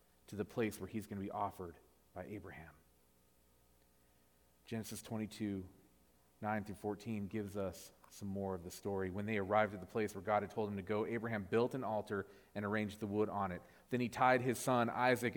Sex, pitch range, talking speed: male, 90-120 Hz, 205 wpm